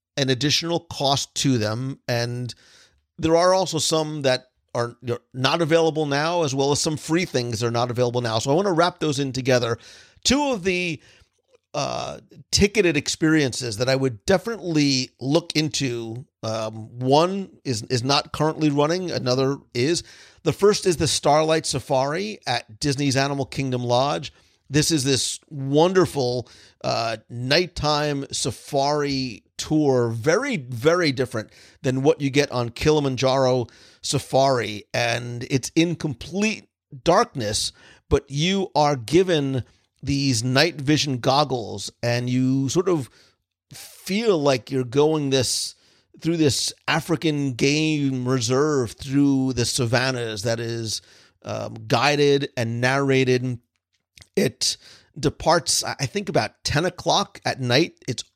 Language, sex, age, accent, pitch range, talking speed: English, male, 50-69, American, 125-155 Hz, 135 wpm